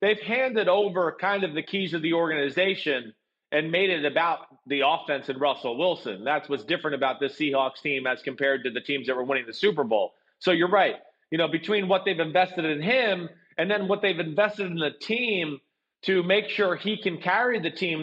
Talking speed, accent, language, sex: 215 wpm, American, English, male